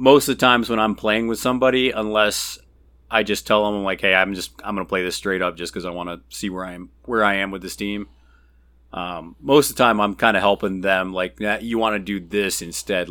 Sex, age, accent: male, 30-49, American